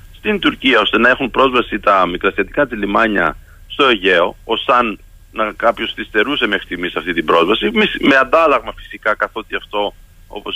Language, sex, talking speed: Greek, male, 155 wpm